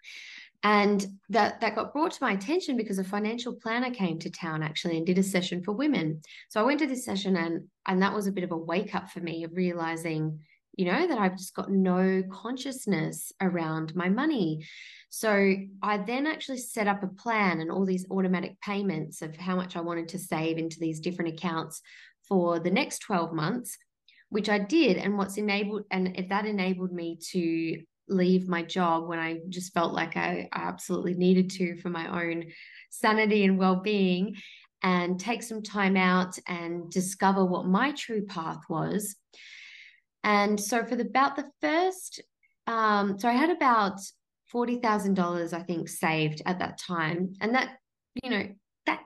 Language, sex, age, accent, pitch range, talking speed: English, female, 20-39, Australian, 175-215 Hz, 185 wpm